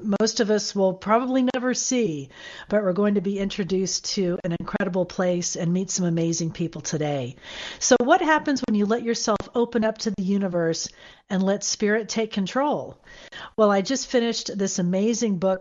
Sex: female